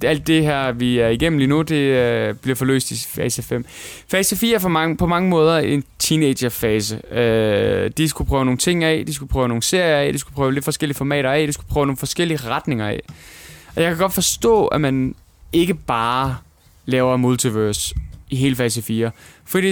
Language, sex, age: Danish, male, 20-39